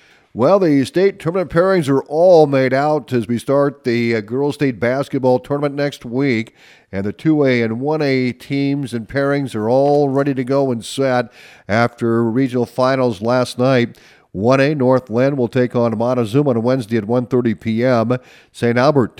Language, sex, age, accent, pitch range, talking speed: English, male, 50-69, American, 115-140 Hz, 170 wpm